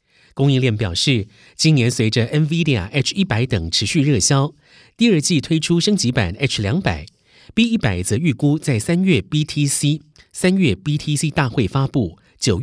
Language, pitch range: Chinese, 110-150 Hz